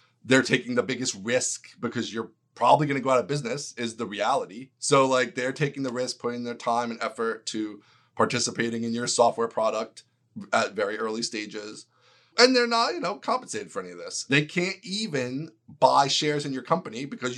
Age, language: 30-49, English